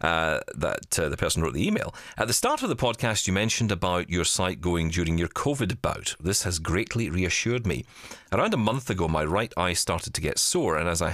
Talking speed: 230 wpm